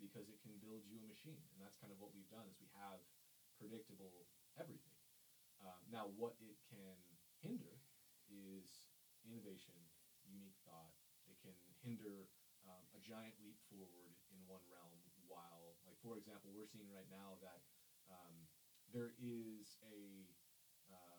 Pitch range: 90-110 Hz